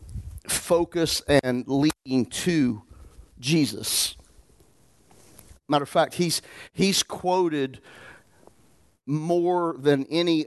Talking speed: 80 wpm